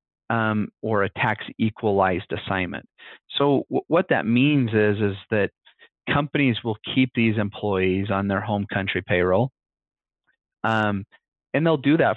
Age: 30-49